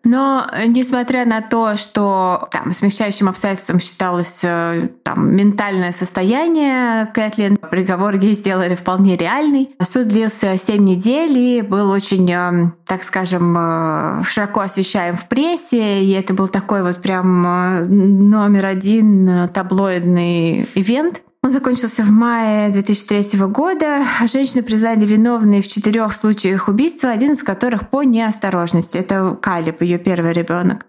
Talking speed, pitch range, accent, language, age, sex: 125 wpm, 190-240 Hz, native, Russian, 20-39, female